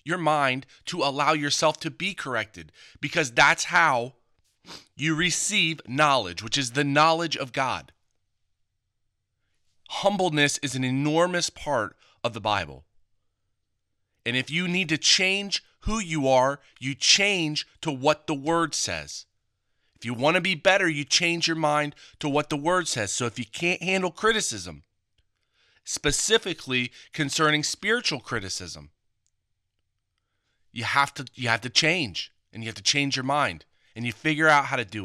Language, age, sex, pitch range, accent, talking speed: English, 30-49, male, 105-155 Hz, American, 155 wpm